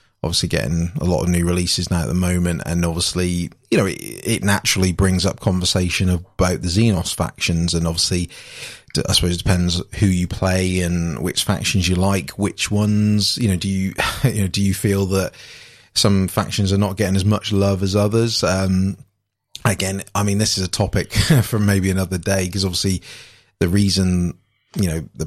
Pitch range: 90-105 Hz